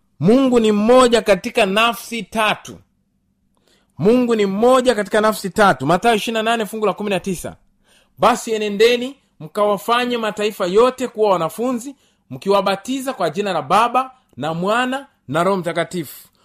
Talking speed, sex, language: 115 wpm, male, Swahili